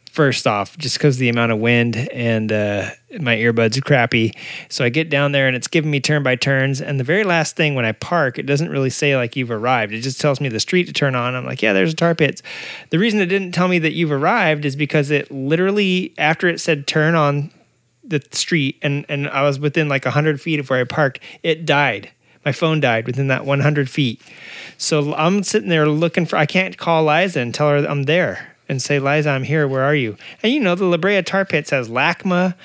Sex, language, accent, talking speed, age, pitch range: male, English, American, 240 wpm, 30-49, 130-160 Hz